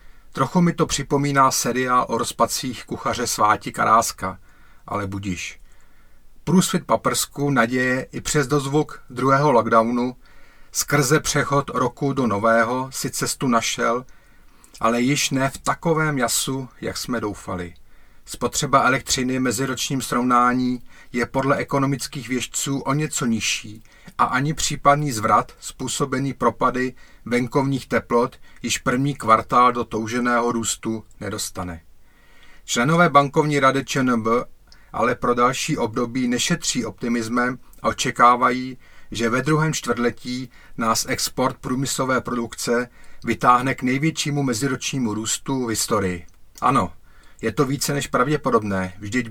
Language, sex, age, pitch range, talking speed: Czech, male, 40-59, 110-135 Hz, 120 wpm